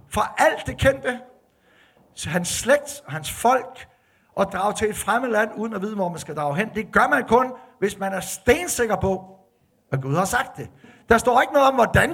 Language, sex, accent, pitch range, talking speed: Danish, male, native, 175-235 Hz, 215 wpm